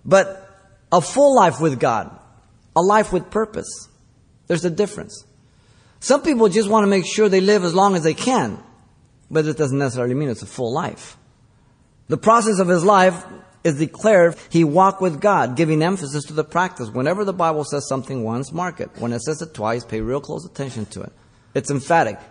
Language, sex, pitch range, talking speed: English, male, 115-175 Hz, 195 wpm